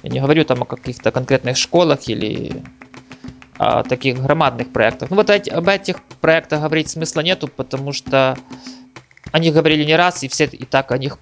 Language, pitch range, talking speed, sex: Russian, 140-180 Hz, 180 wpm, male